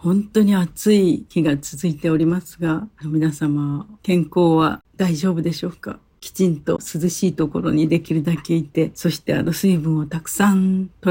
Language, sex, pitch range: Japanese, female, 165-195 Hz